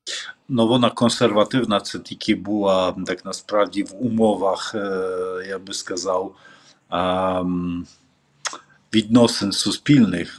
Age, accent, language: 50-69, Polish, Ukrainian